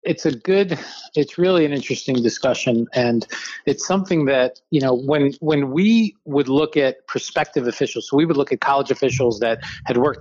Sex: male